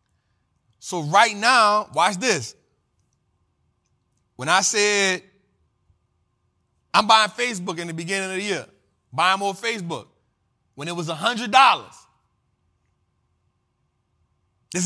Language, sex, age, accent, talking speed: English, male, 30-49, American, 110 wpm